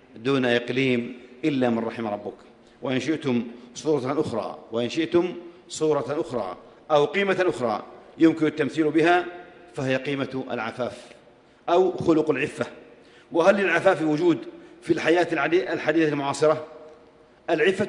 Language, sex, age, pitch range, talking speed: Arabic, male, 50-69, 130-170 Hz, 115 wpm